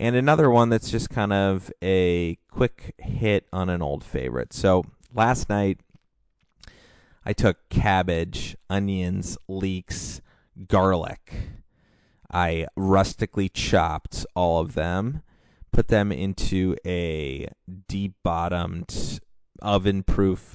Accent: American